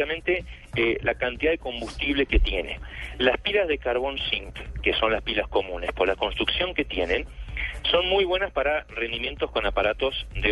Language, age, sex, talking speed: Spanish, 40-59, male, 170 wpm